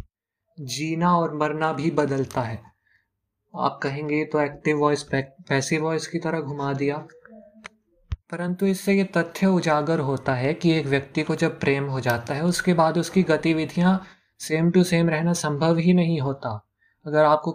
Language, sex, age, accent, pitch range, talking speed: Hindi, male, 20-39, native, 130-165 Hz, 155 wpm